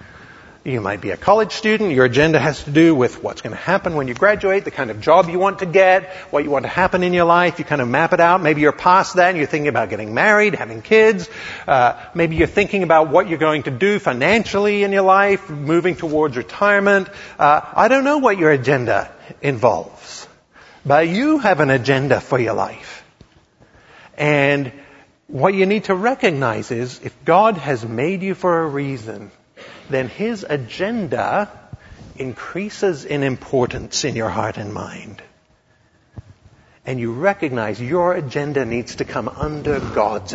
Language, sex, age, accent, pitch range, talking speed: English, male, 50-69, American, 130-190 Hz, 180 wpm